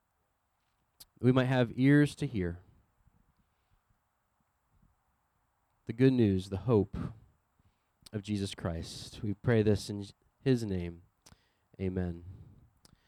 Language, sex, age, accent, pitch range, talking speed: English, male, 30-49, American, 110-180 Hz, 95 wpm